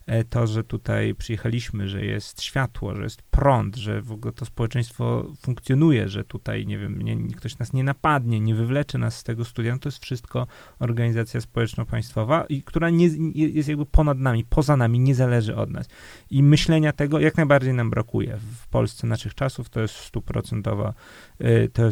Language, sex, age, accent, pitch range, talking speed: Polish, male, 30-49, native, 115-140 Hz, 180 wpm